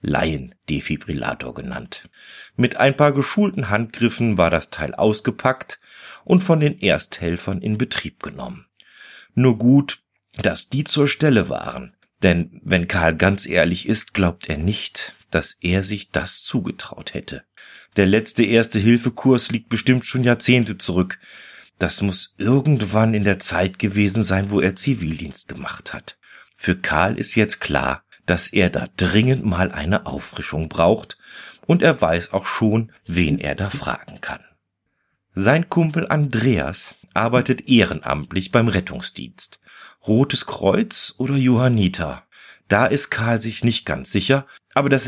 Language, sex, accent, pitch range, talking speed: German, male, German, 95-130 Hz, 140 wpm